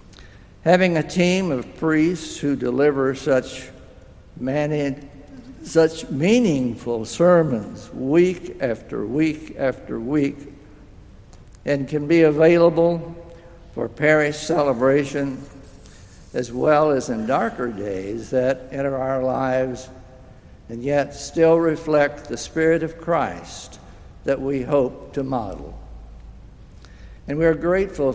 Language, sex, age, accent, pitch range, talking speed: English, male, 60-79, American, 130-155 Hz, 110 wpm